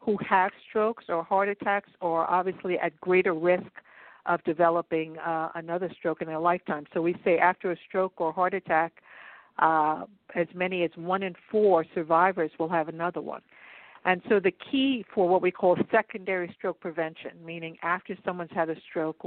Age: 60-79